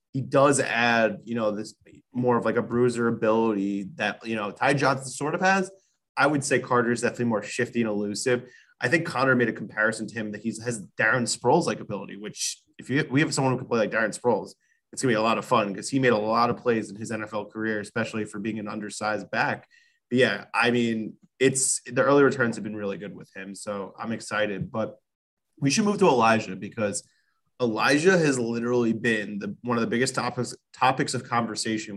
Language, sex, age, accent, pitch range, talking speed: English, male, 20-39, American, 105-130 Hz, 220 wpm